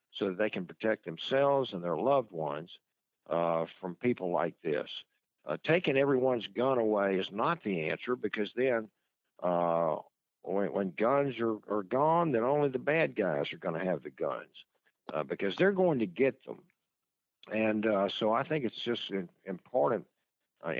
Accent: American